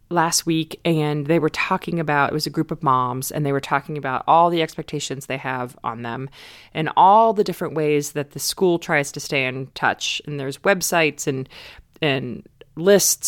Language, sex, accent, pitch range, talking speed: English, female, American, 155-215 Hz, 200 wpm